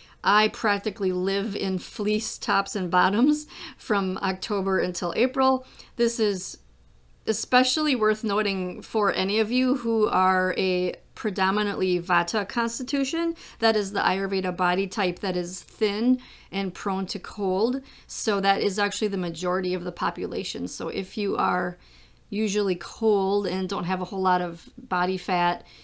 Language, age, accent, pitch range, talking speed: English, 40-59, American, 185-220 Hz, 150 wpm